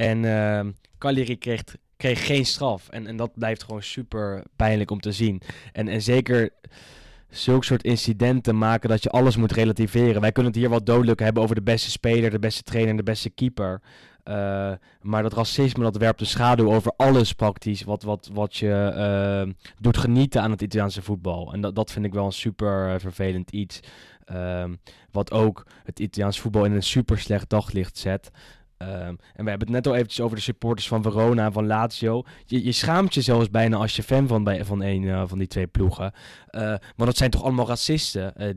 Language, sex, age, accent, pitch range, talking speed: Dutch, male, 10-29, Dutch, 100-120 Hz, 200 wpm